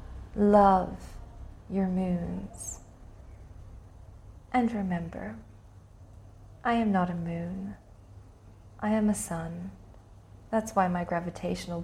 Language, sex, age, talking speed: English, female, 30-49, 90 wpm